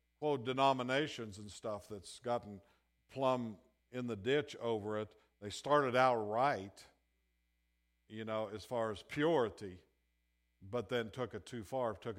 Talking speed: 145 wpm